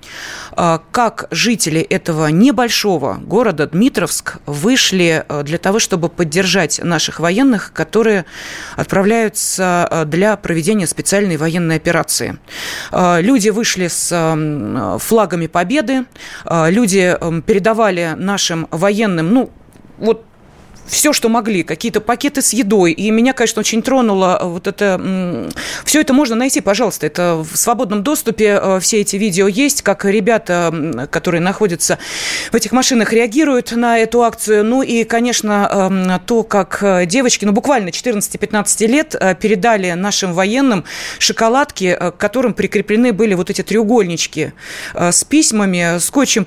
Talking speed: 120 wpm